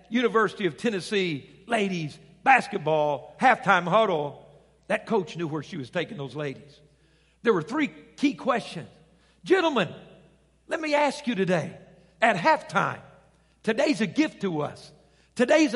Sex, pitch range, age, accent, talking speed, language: male, 180-275 Hz, 50-69, American, 135 wpm, English